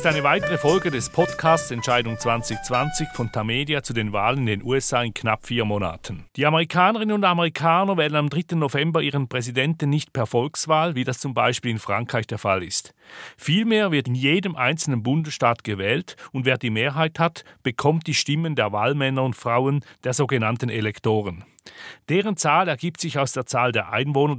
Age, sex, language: 40-59, male, German